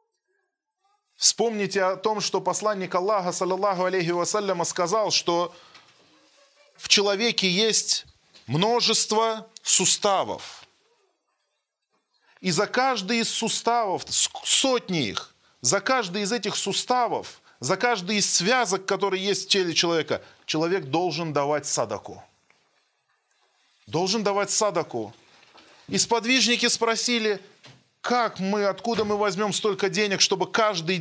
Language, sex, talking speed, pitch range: Russian, male, 105 wpm, 180-230 Hz